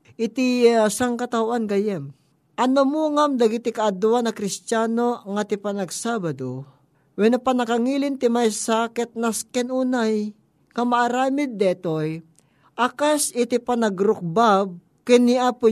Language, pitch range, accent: Filipino, 190-240 Hz, native